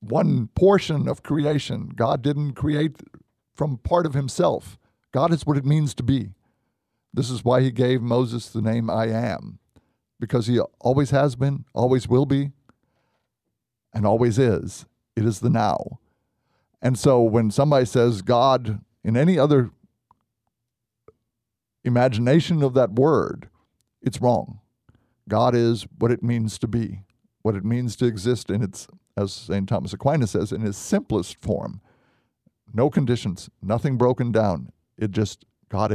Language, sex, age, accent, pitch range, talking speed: English, male, 50-69, American, 105-130 Hz, 150 wpm